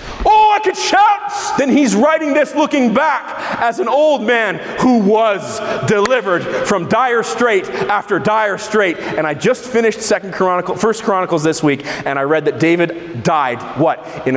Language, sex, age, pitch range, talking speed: English, male, 40-59, 130-205 Hz, 165 wpm